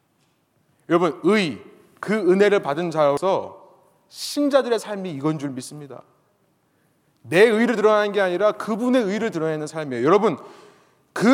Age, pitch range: 30-49, 145-205 Hz